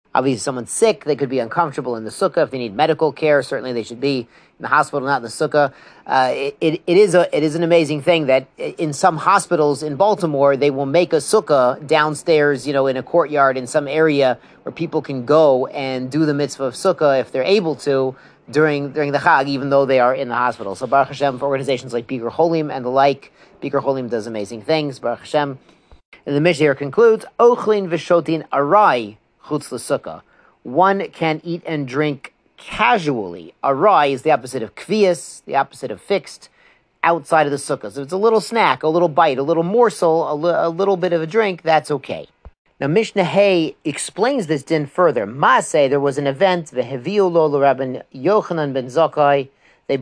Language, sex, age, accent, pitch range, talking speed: English, male, 40-59, American, 135-170 Hz, 205 wpm